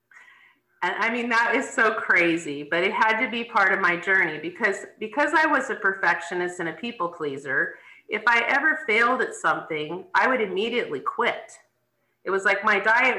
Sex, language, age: female, English, 40-59